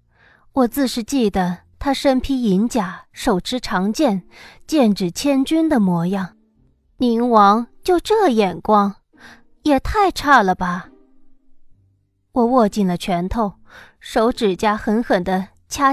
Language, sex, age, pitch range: Chinese, female, 20-39, 200-275 Hz